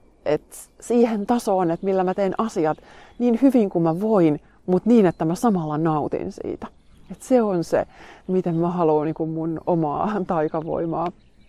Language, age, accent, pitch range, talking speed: Finnish, 30-49, native, 165-200 Hz, 160 wpm